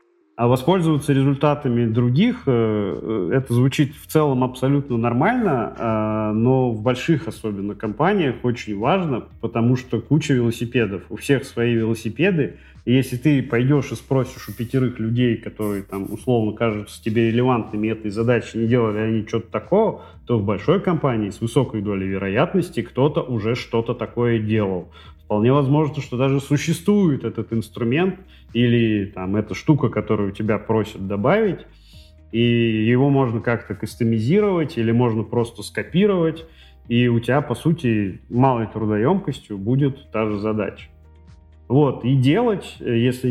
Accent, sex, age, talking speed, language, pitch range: native, male, 30-49, 135 wpm, Russian, 110-140 Hz